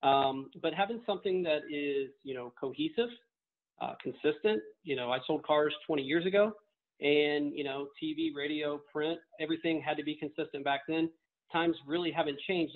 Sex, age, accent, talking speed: male, 40-59, American, 170 wpm